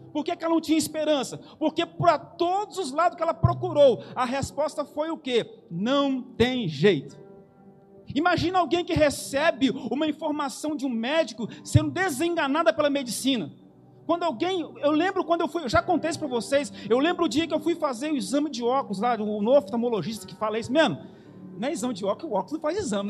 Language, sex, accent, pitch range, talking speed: Portuguese, male, Brazilian, 225-330 Hz, 200 wpm